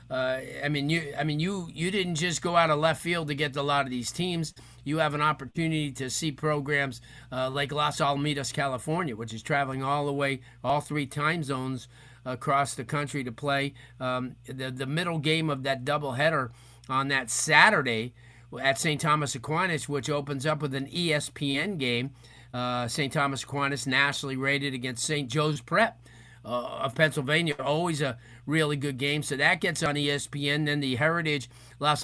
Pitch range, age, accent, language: 130-155 Hz, 40-59, American, English